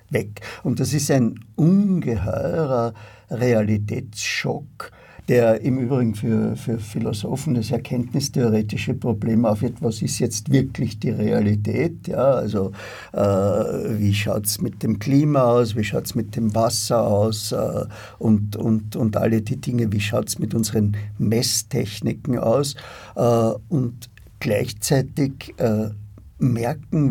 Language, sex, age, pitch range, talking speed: German, male, 50-69, 110-130 Hz, 130 wpm